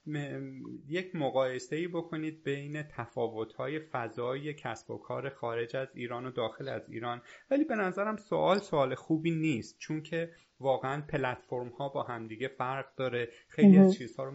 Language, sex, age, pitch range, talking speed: Persian, male, 30-49, 120-160 Hz, 165 wpm